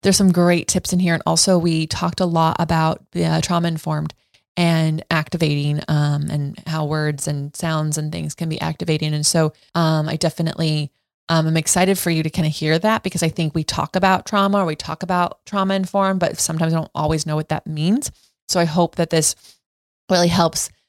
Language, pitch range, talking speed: English, 155-175 Hz, 215 wpm